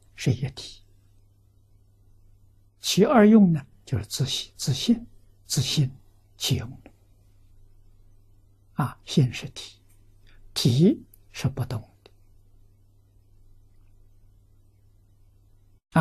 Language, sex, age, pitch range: Chinese, male, 60-79, 100-125 Hz